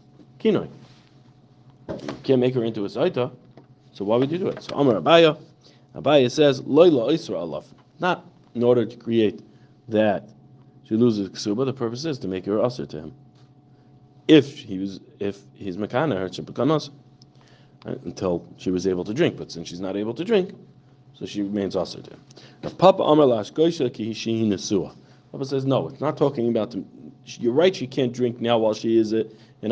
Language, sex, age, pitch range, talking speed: English, male, 40-59, 105-140 Hz, 180 wpm